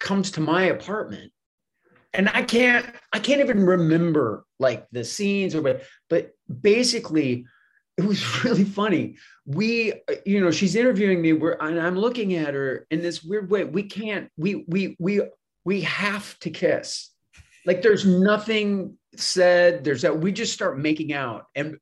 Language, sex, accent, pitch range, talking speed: English, male, American, 125-195 Hz, 160 wpm